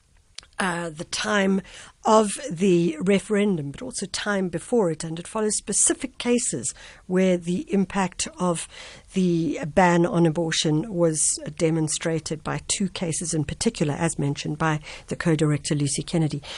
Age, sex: 60-79, female